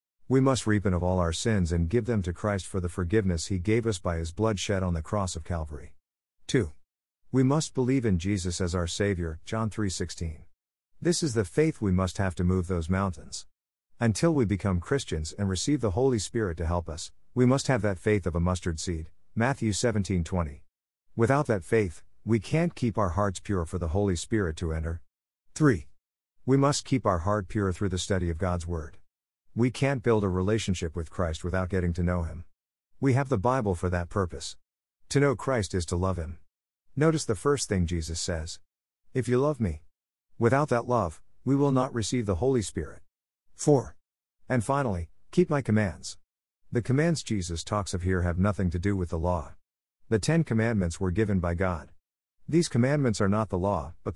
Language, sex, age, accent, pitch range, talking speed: English, male, 50-69, American, 85-115 Hz, 200 wpm